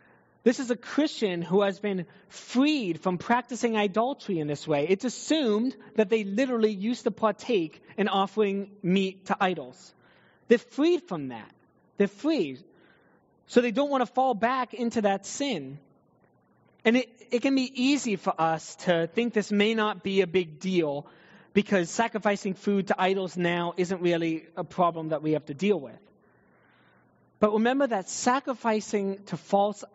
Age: 20-39